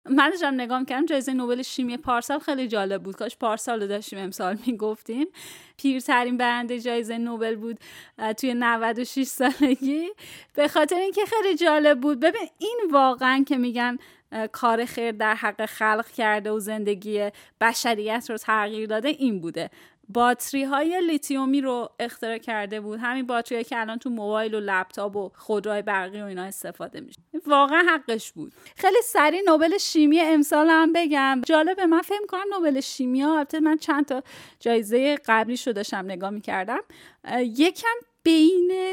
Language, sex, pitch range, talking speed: Persian, female, 225-295 Hz, 155 wpm